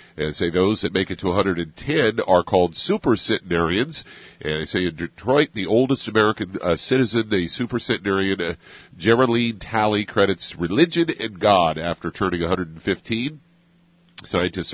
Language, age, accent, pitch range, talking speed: English, 50-69, American, 85-110 Hz, 150 wpm